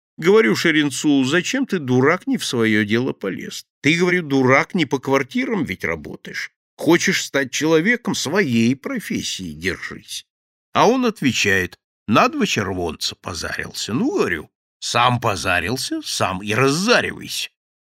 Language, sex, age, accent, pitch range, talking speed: Russian, male, 60-79, native, 95-160 Hz, 130 wpm